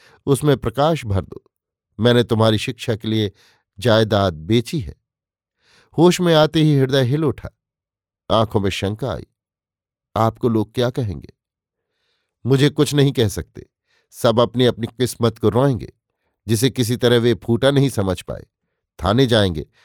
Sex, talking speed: male, 145 wpm